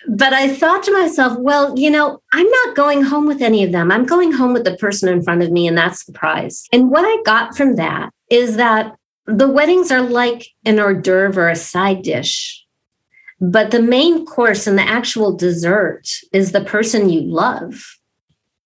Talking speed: 200 wpm